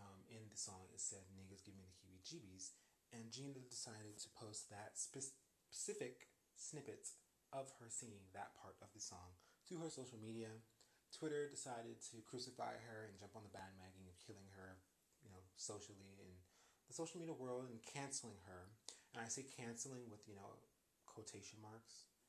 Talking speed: 165 wpm